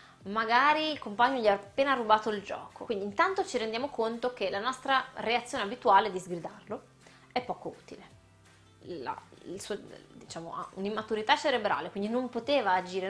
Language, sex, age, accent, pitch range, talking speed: Italian, female, 20-39, native, 195-255 Hz, 160 wpm